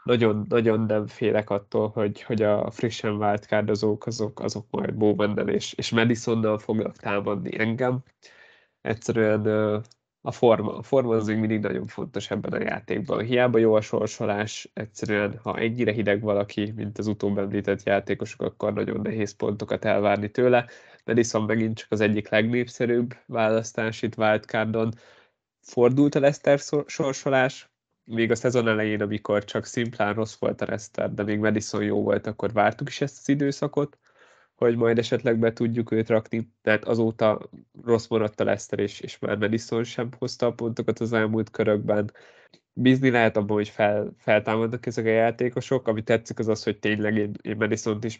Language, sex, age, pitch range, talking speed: Hungarian, male, 20-39, 105-120 Hz, 160 wpm